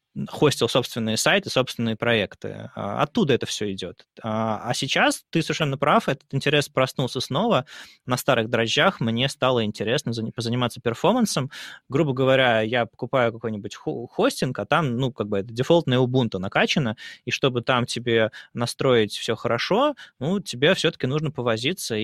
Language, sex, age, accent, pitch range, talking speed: Ukrainian, male, 20-39, native, 115-150 Hz, 145 wpm